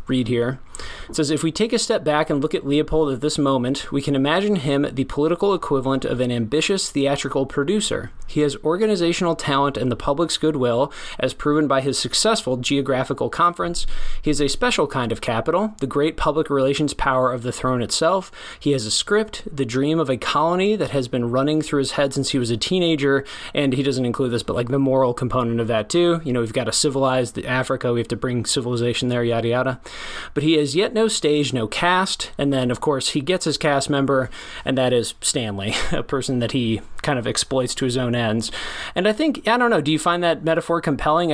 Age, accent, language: 20-39, American, English